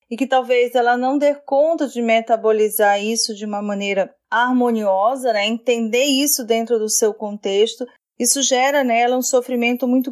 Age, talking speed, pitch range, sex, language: 30-49, 160 wpm, 220-255 Hz, female, Portuguese